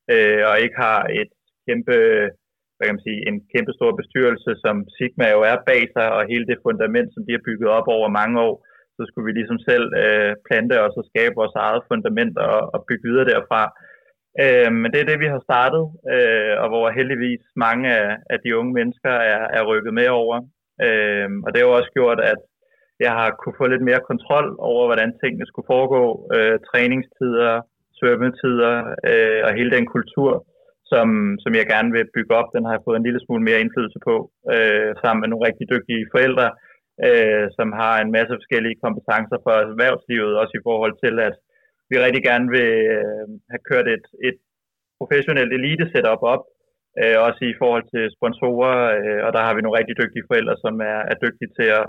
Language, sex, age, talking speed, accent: Danish, male, 20-39, 185 wpm, native